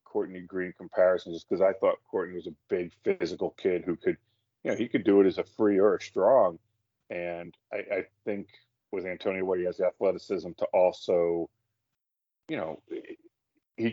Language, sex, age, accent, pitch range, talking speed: English, male, 30-49, American, 90-115 Hz, 180 wpm